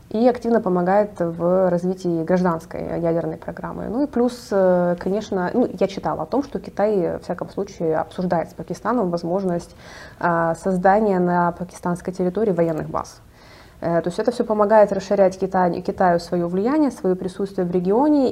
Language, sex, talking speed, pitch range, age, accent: Russian, female, 145 wpm, 175-215 Hz, 20-39, native